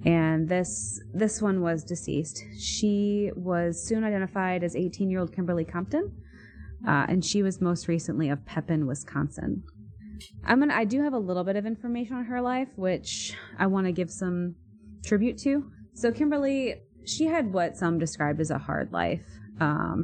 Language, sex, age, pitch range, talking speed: English, female, 20-39, 155-195 Hz, 170 wpm